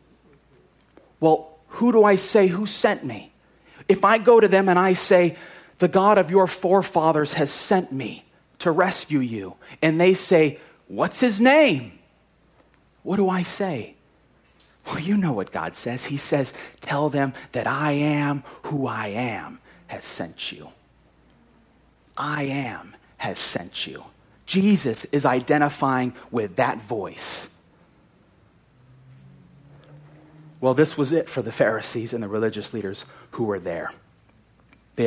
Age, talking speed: 30-49, 140 wpm